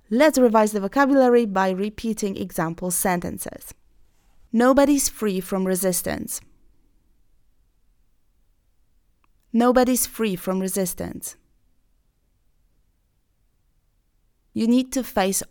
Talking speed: 75 wpm